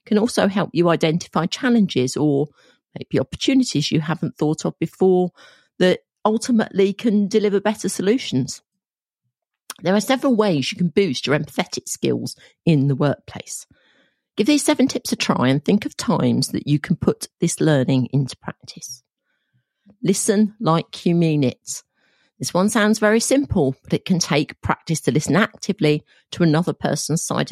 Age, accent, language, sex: 40-59, British, English, female